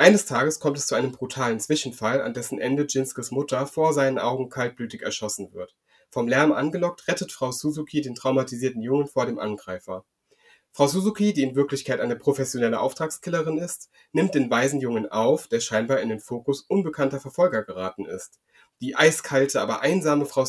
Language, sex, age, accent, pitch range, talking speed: German, male, 30-49, German, 120-150 Hz, 170 wpm